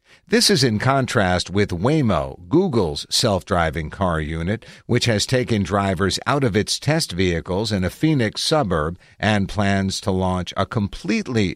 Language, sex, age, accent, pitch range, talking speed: English, male, 60-79, American, 90-125 Hz, 150 wpm